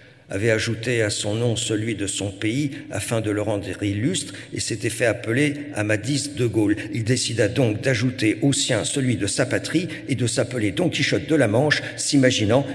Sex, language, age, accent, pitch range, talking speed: male, French, 50-69, French, 115-155 Hz, 190 wpm